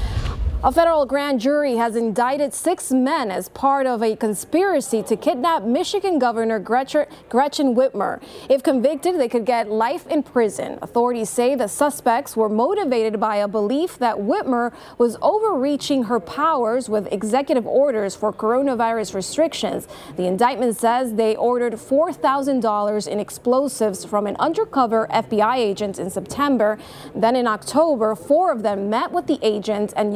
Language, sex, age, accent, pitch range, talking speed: English, female, 30-49, American, 215-275 Hz, 150 wpm